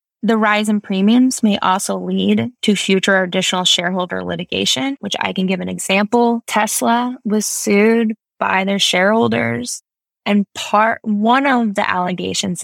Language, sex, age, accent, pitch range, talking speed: English, female, 10-29, American, 185-225 Hz, 145 wpm